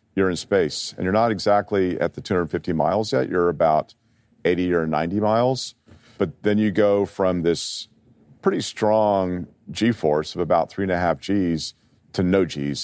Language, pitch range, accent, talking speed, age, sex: English, 80-105 Hz, American, 175 wpm, 50-69, male